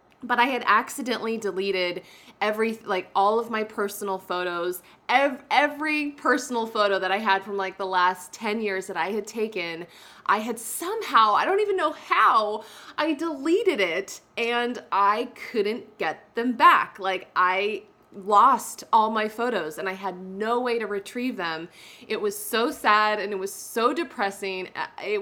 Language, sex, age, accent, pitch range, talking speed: English, female, 20-39, American, 195-260 Hz, 165 wpm